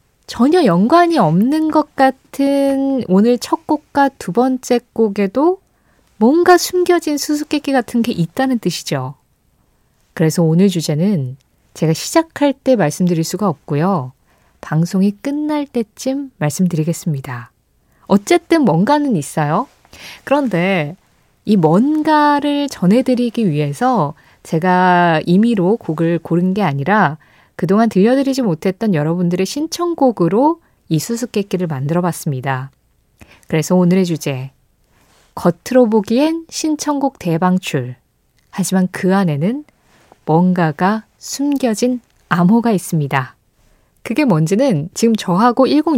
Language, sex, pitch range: Korean, female, 170-270 Hz